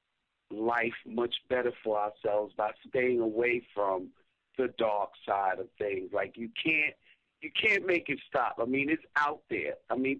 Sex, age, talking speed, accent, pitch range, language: male, 50-69, 170 wpm, American, 115-140 Hz, English